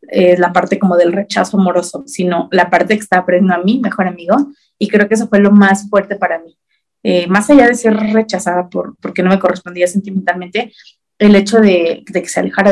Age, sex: 20-39, female